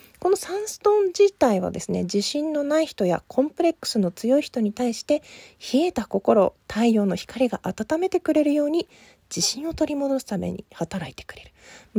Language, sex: Japanese, female